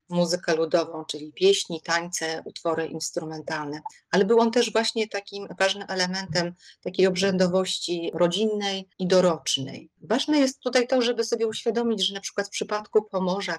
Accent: native